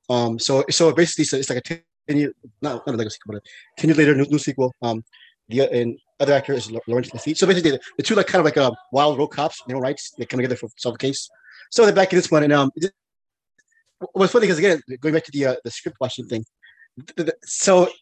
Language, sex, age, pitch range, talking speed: English, male, 20-39, 120-160 Hz, 235 wpm